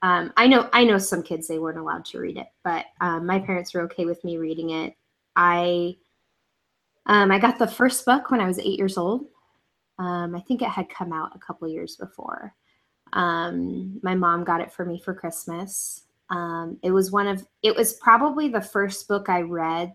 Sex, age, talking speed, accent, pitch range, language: female, 10-29, 210 wpm, American, 170-200 Hz, English